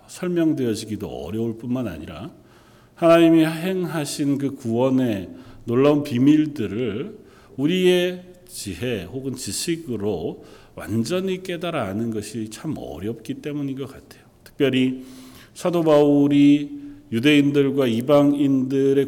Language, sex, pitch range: Korean, male, 115-145 Hz